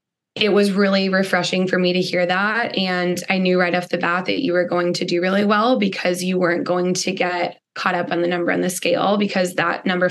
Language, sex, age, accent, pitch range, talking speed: English, female, 20-39, American, 180-205 Hz, 245 wpm